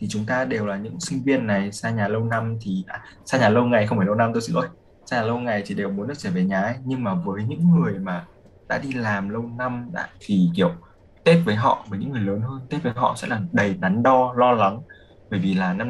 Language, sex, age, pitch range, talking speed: Vietnamese, male, 20-39, 100-135 Hz, 280 wpm